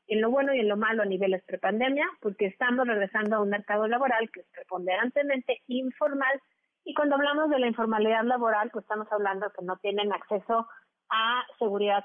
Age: 30-49